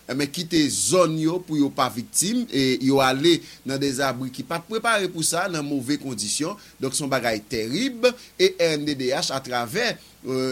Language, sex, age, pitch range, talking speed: English, male, 30-49, 130-170 Hz, 175 wpm